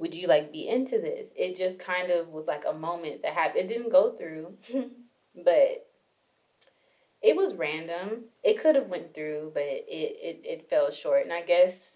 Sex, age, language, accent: female, 20-39, English, American